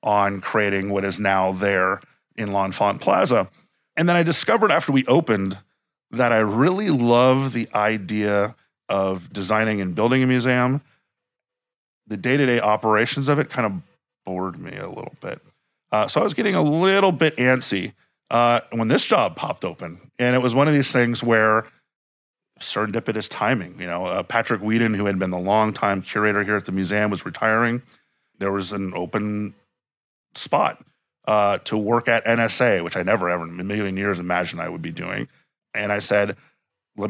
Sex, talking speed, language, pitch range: male, 175 wpm, English, 100-125 Hz